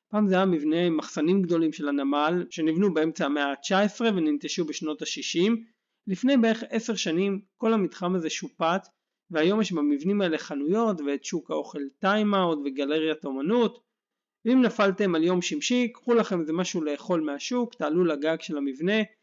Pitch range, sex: 160-215 Hz, male